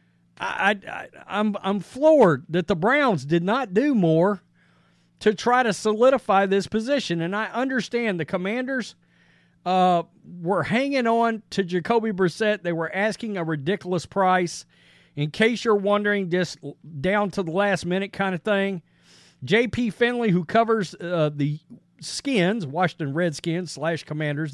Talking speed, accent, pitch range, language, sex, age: 145 wpm, American, 160-220 Hz, English, male, 40-59